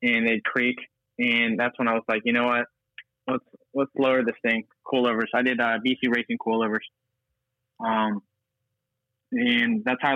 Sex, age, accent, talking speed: male, 20-39, American, 170 wpm